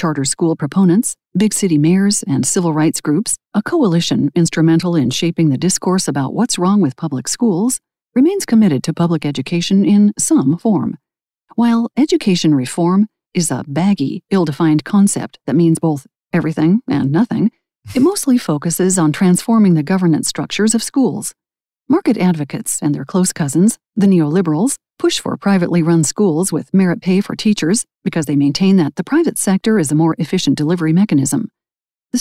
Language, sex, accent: English, female, American